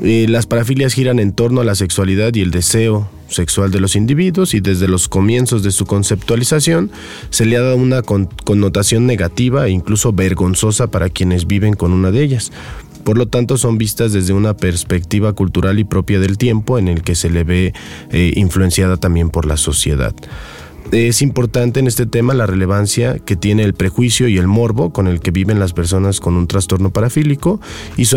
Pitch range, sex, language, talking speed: 95-120 Hz, male, Spanish, 190 wpm